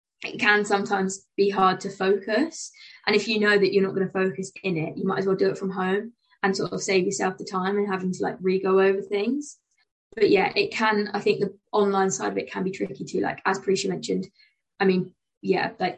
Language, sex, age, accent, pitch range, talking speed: English, female, 20-39, British, 190-225 Hz, 240 wpm